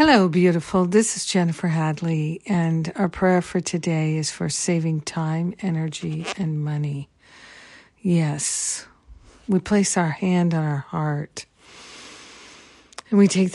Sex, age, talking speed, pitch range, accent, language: female, 50-69, 130 wpm, 165-185 Hz, American, English